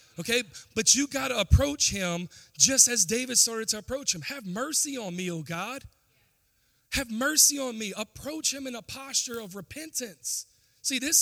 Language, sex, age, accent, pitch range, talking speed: English, male, 40-59, American, 155-235 Hz, 170 wpm